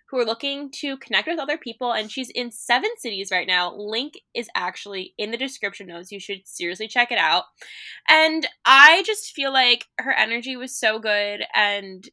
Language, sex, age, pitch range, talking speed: English, female, 10-29, 205-260 Hz, 195 wpm